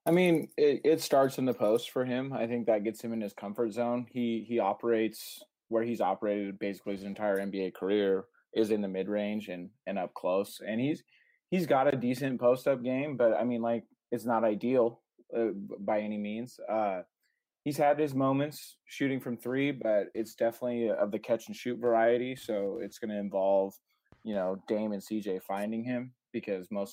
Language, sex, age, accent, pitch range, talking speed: English, male, 20-39, American, 105-130 Hz, 190 wpm